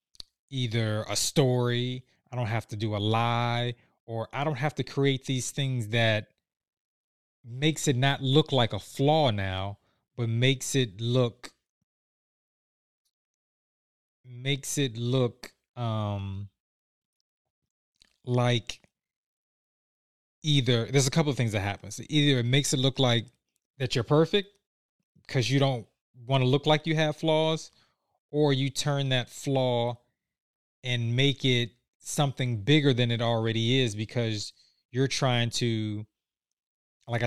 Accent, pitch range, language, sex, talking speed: American, 115-140 Hz, English, male, 130 wpm